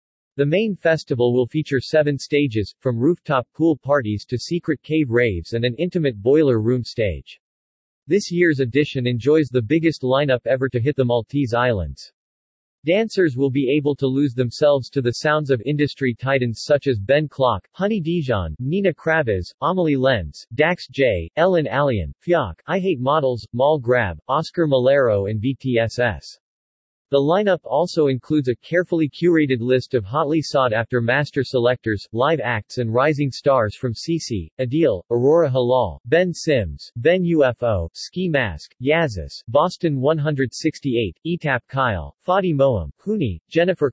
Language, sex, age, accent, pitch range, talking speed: English, male, 40-59, American, 120-155 Hz, 150 wpm